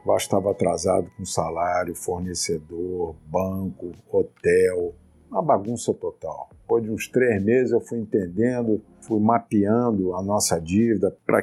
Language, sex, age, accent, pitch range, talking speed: Portuguese, male, 50-69, Brazilian, 95-110 Hz, 135 wpm